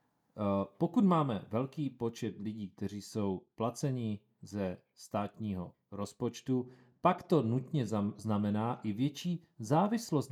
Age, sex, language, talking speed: 40-59, male, Czech, 110 wpm